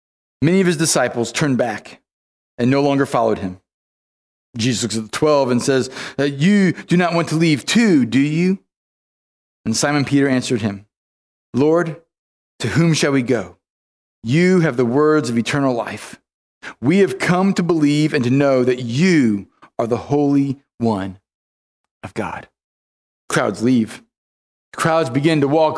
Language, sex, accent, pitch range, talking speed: English, male, American, 115-180 Hz, 155 wpm